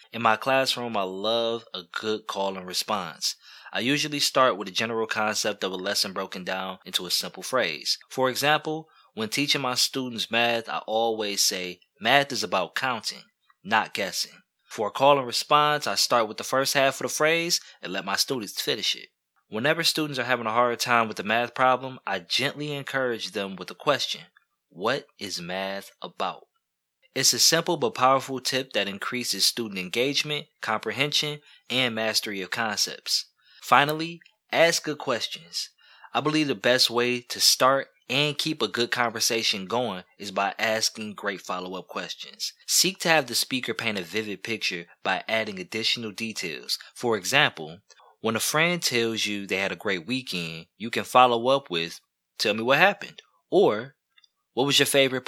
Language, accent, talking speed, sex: English, American, 175 wpm, male